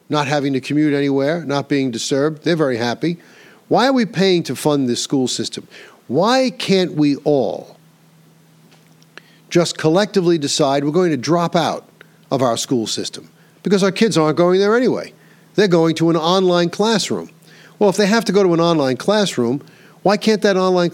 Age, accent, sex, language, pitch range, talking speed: 50-69, American, male, English, 140-180 Hz, 180 wpm